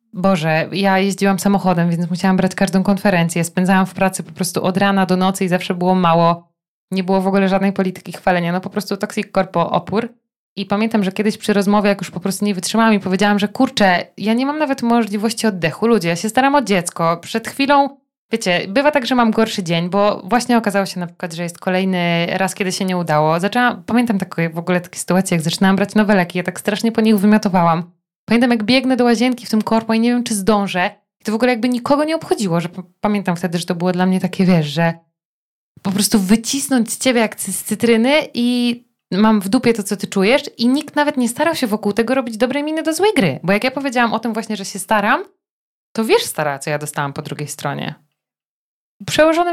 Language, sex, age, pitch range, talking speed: Polish, female, 20-39, 185-235 Hz, 230 wpm